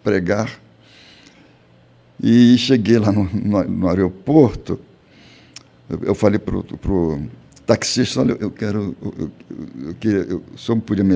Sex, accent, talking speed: male, Brazilian, 140 wpm